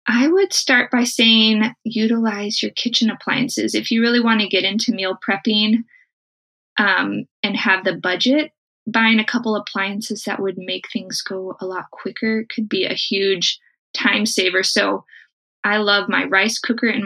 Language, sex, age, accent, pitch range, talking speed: English, female, 20-39, American, 195-245 Hz, 170 wpm